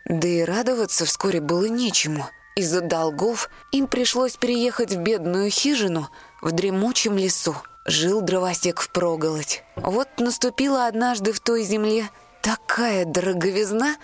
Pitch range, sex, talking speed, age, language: 185-250 Hz, female, 125 wpm, 20-39, Russian